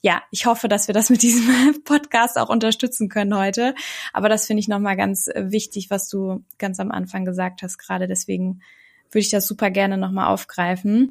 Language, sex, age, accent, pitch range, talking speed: German, female, 20-39, German, 200-230 Hz, 195 wpm